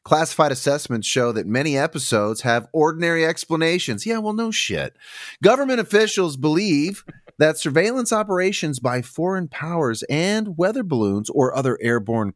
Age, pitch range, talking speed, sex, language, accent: 30-49, 115-165 Hz, 135 wpm, male, English, American